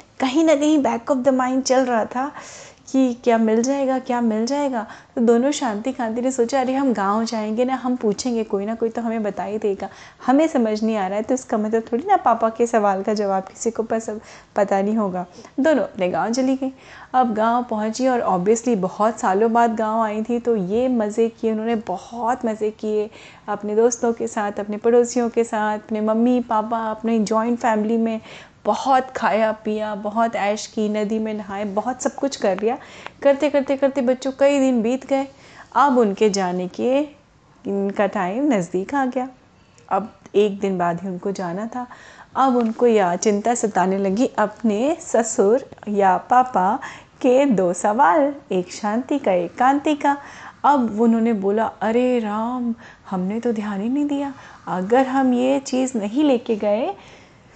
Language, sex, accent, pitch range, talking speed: Hindi, female, native, 210-255 Hz, 185 wpm